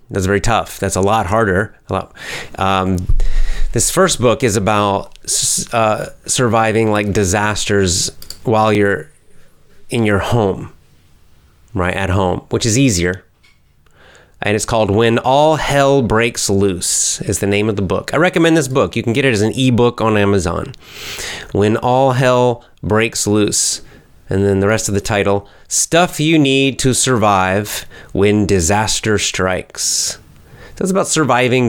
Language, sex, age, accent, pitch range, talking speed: English, male, 30-49, American, 95-115 Hz, 150 wpm